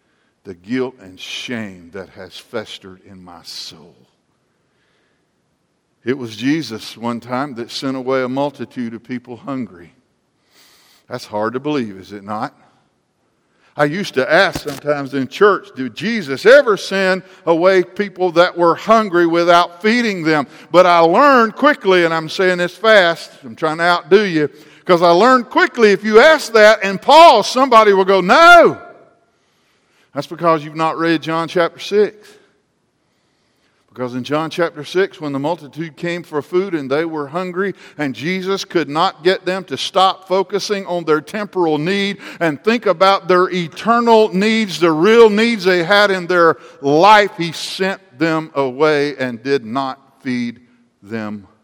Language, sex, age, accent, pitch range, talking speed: English, male, 60-79, American, 135-190 Hz, 160 wpm